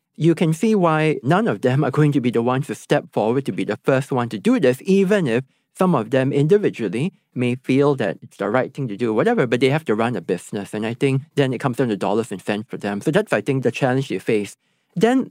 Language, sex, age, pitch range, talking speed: English, male, 40-59, 120-155 Hz, 270 wpm